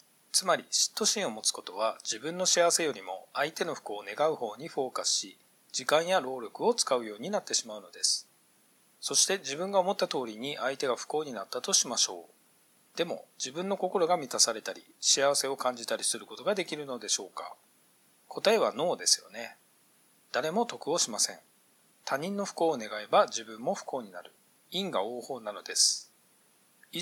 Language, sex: Japanese, male